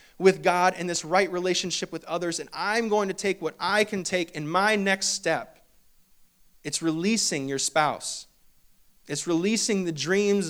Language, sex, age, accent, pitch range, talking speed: English, male, 30-49, American, 160-195 Hz, 165 wpm